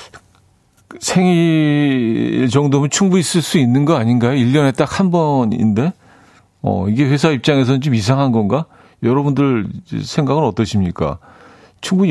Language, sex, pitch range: Korean, male, 105-155 Hz